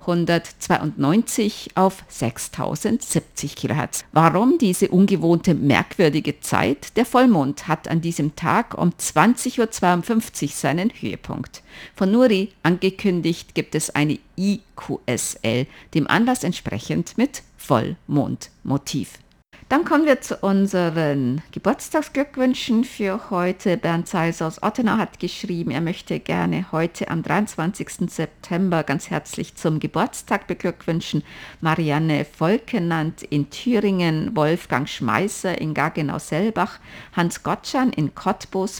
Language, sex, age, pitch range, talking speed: German, female, 50-69, 160-210 Hz, 110 wpm